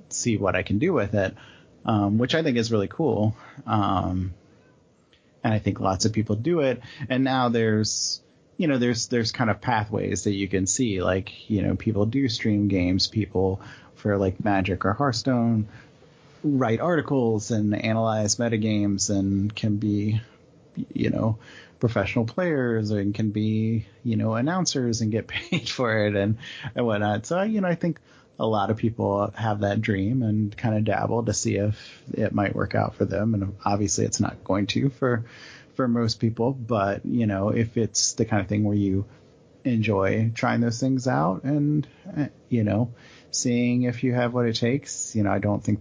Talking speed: 185 wpm